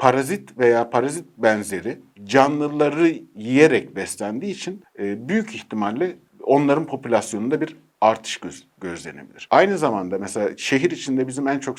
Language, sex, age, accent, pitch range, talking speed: Turkish, male, 50-69, native, 105-135 Hz, 120 wpm